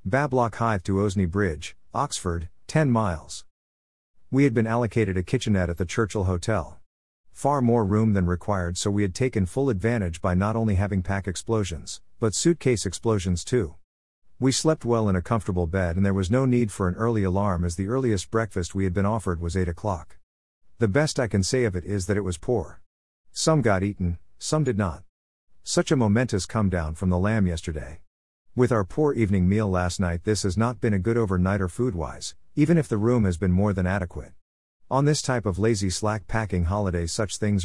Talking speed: 200 wpm